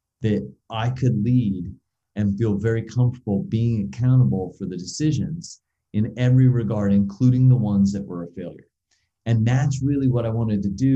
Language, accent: English, American